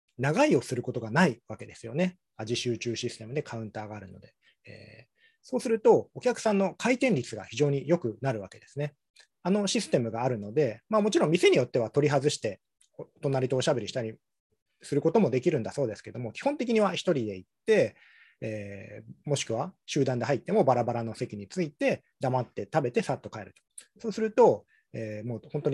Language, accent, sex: Japanese, native, male